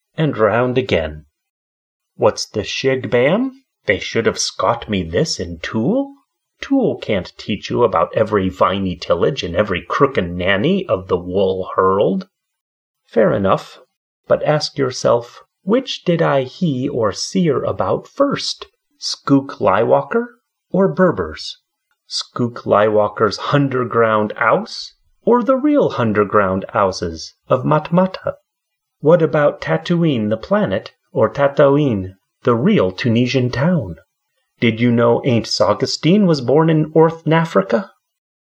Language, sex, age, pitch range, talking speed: English, male, 30-49, 115-180 Hz, 125 wpm